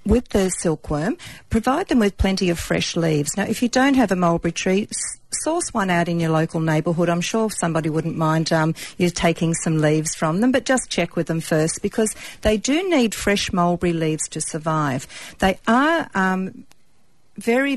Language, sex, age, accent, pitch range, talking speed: English, female, 50-69, Australian, 165-210 Hz, 190 wpm